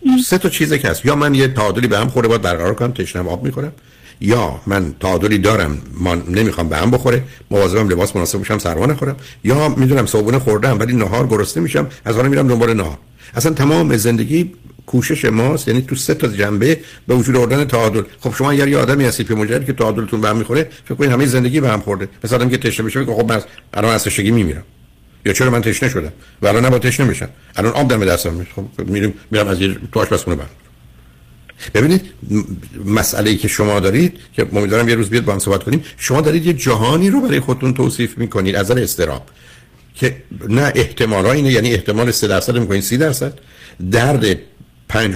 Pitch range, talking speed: 100-135 Hz, 195 wpm